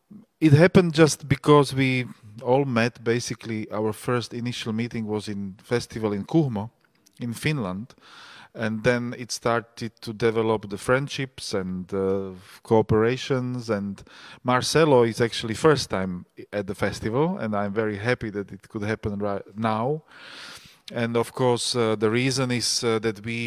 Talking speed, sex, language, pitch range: 150 wpm, male, Slovak, 105-120 Hz